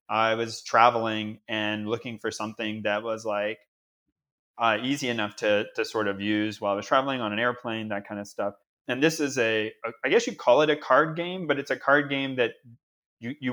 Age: 30-49